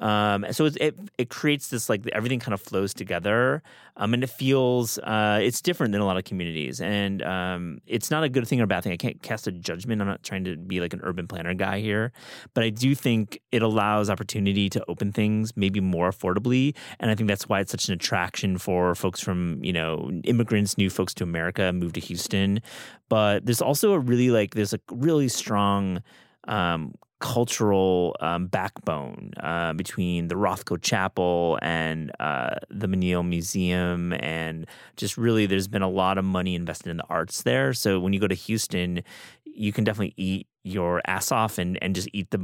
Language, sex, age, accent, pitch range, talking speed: English, male, 30-49, American, 90-115 Hz, 200 wpm